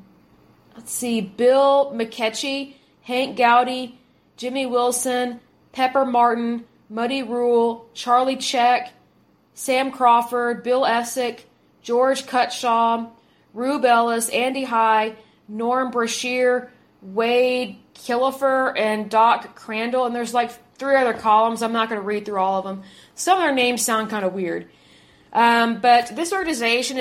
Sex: female